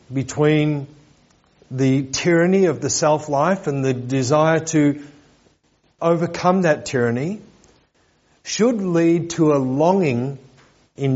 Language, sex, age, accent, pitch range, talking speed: English, male, 50-69, Australian, 140-180 Hz, 100 wpm